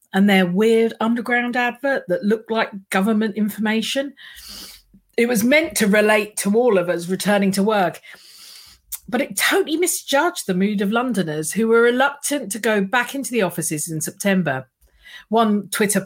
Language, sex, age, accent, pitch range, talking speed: English, female, 50-69, British, 180-230 Hz, 160 wpm